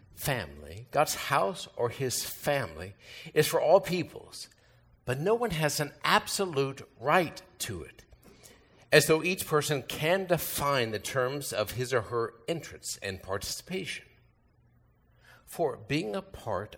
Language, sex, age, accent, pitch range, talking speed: English, male, 60-79, American, 115-155 Hz, 135 wpm